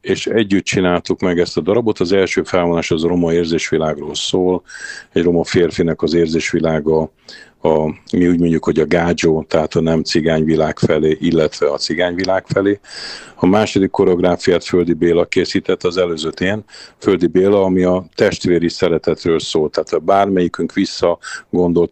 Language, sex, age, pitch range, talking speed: Hungarian, male, 50-69, 80-90 Hz, 160 wpm